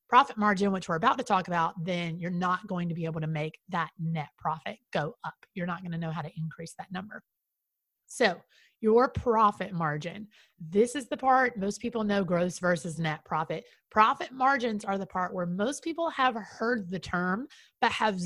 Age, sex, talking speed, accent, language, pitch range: 30-49, female, 200 wpm, American, English, 175-220 Hz